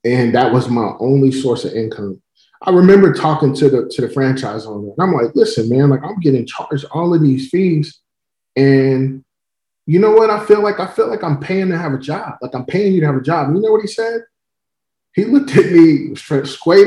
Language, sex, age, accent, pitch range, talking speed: English, male, 20-39, American, 125-155 Hz, 230 wpm